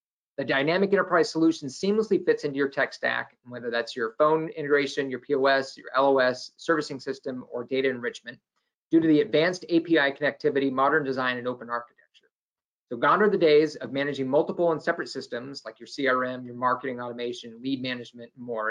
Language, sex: English, male